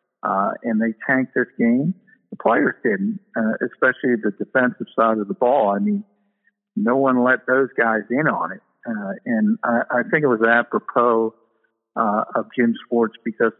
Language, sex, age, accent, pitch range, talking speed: English, male, 60-79, American, 110-135 Hz, 175 wpm